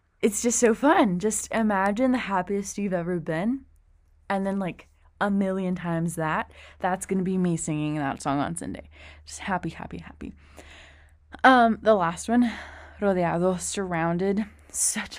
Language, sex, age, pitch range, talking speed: English, female, 20-39, 150-200 Hz, 150 wpm